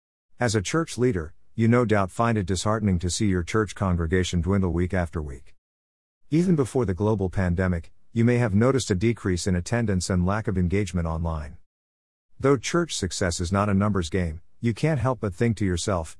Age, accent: 50-69, American